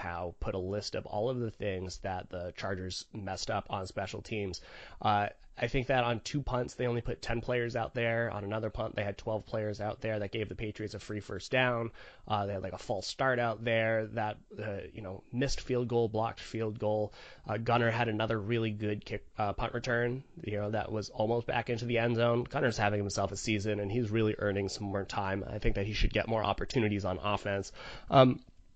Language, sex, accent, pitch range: English, male, American, 105-125 Hz